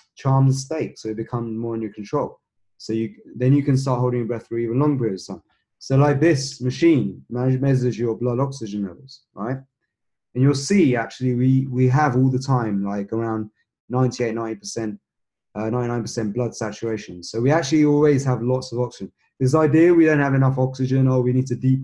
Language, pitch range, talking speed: English, 110-135 Hz, 190 wpm